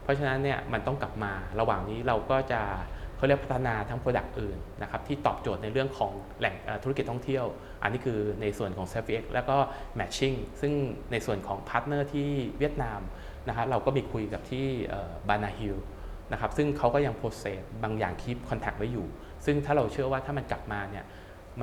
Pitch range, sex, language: 100-135 Hz, male, Thai